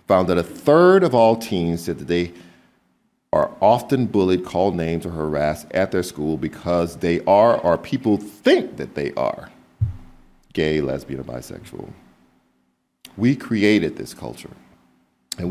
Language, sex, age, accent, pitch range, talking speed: English, male, 50-69, American, 70-110 Hz, 145 wpm